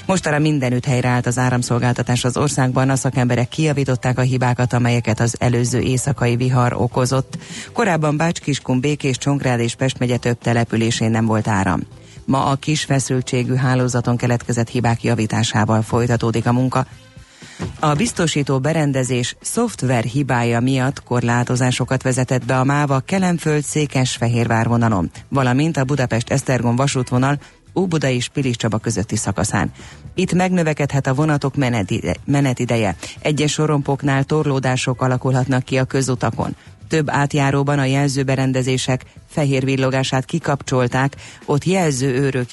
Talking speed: 120 wpm